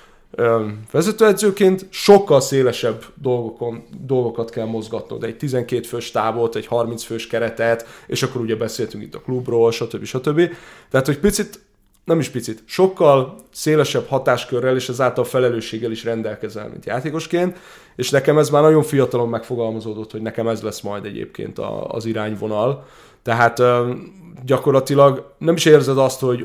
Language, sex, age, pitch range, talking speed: Hungarian, male, 20-39, 115-150 Hz, 150 wpm